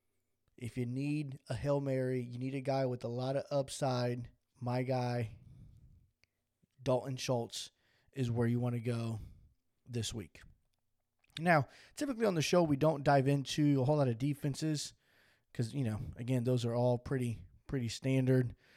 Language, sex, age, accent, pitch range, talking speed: English, male, 20-39, American, 115-140 Hz, 165 wpm